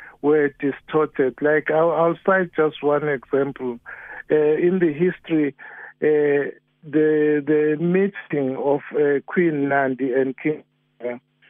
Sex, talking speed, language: male, 125 wpm, English